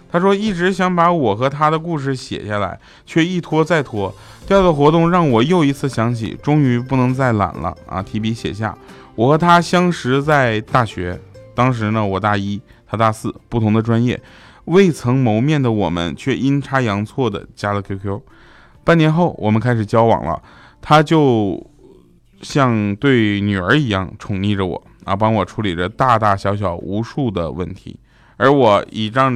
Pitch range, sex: 100-135 Hz, male